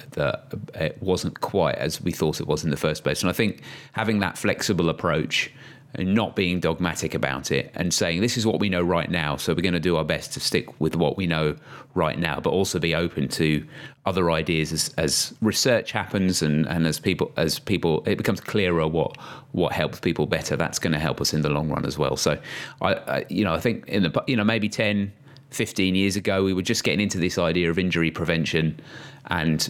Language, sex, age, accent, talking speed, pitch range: English, male, 30-49, British, 230 wpm, 80-105 Hz